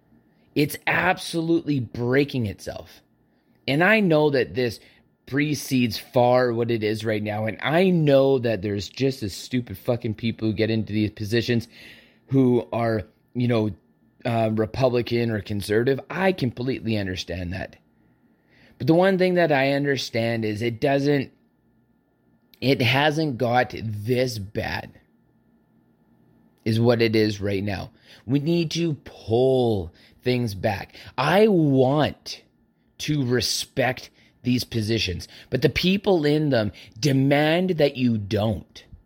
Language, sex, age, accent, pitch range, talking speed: English, male, 30-49, American, 110-150 Hz, 130 wpm